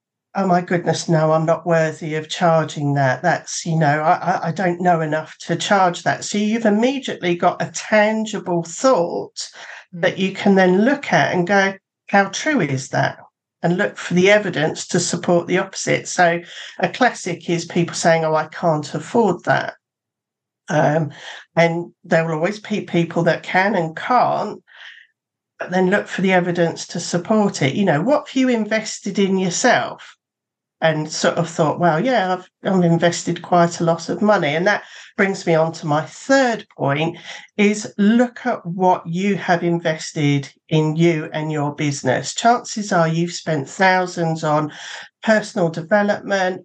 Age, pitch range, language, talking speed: 50-69, 165-205 Hz, English, 170 wpm